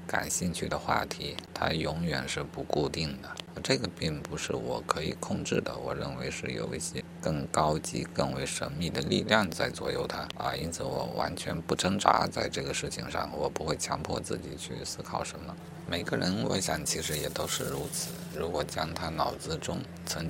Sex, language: male, Chinese